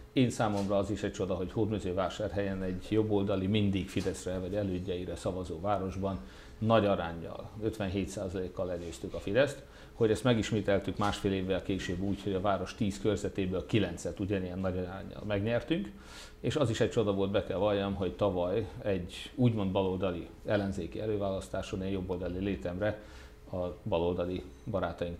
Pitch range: 90-105 Hz